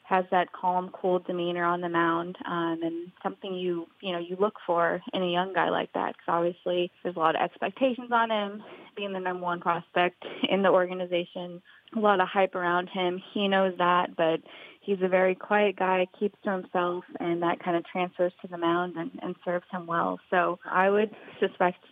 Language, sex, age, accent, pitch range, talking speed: English, female, 20-39, American, 175-190 Hz, 205 wpm